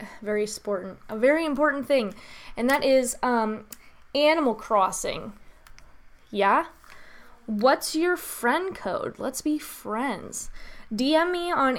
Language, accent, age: English, American, 20-39